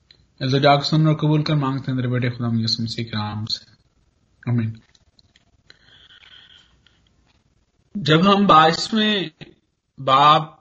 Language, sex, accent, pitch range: Hindi, male, native, 145-195 Hz